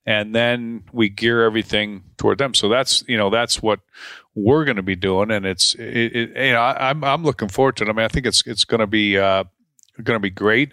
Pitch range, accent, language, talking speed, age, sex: 100-120 Hz, American, English, 250 wpm, 40-59, male